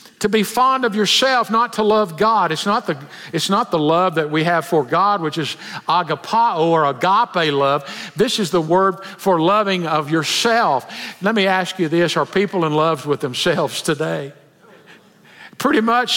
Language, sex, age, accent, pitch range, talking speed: English, male, 50-69, American, 175-240 Hz, 175 wpm